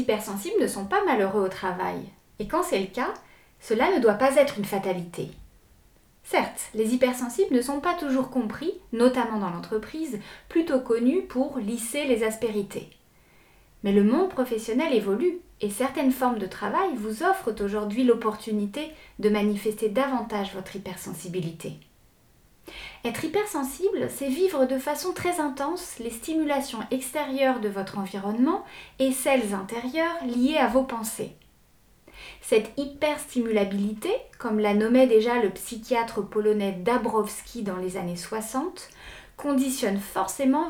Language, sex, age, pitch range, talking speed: French, female, 30-49, 210-285 Hz, 135 wpm